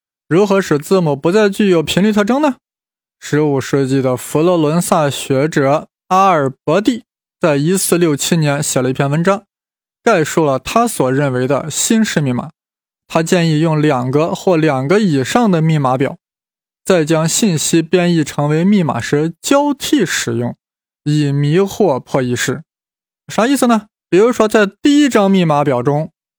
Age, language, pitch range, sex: 20-39, Chinese, 145-200 Hz, male